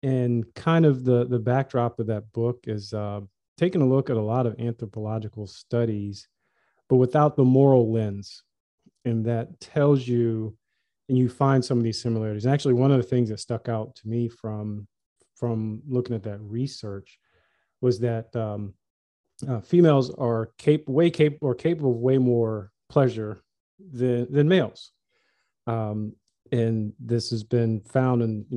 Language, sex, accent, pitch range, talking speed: English, male, American, 110-125 Hz, 165 wpm